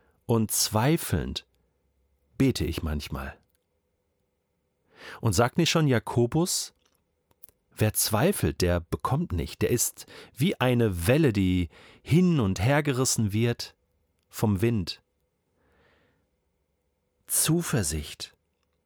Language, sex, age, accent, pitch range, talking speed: German, male, 40-59, German, 85-130 Hz, 90 wpm